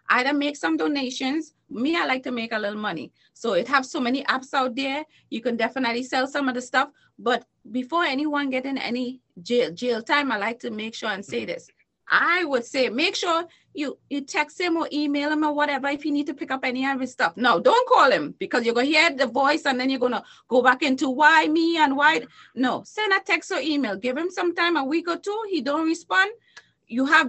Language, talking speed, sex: English, 240 wpm, female